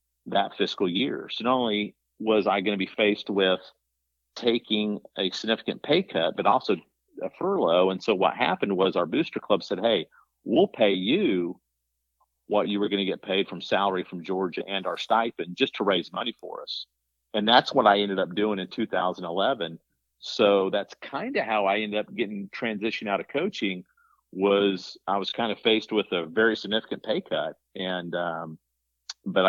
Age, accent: 50-69, American